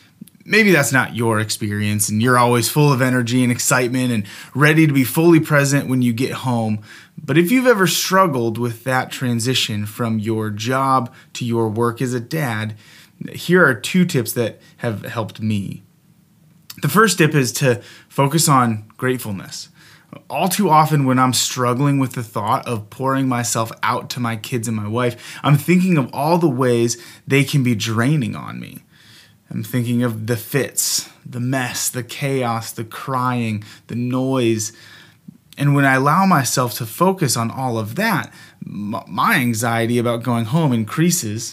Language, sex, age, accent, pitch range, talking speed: English, male, 20-39, American, 115-155 Hz, 170 wpm